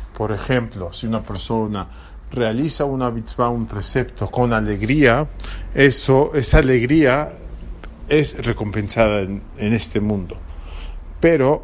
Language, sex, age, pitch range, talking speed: English, male, 50-69, 90-130 Hz, 115 wpm